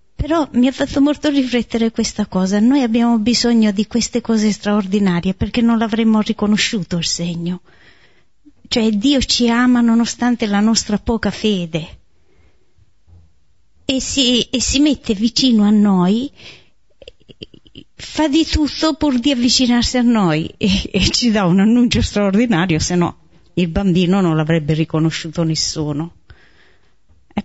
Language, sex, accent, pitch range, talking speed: Italian, female, native, 180-240 Hz, 135 wpm